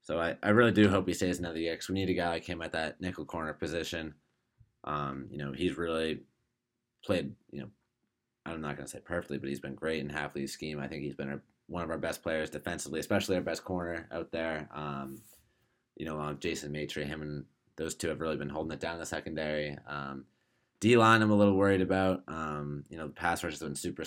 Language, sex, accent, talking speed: English, male, American, 240 wpm